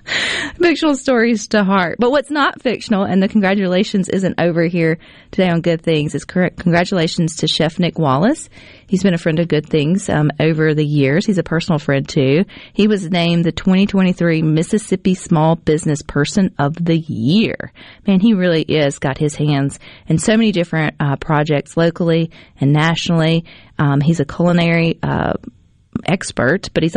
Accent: American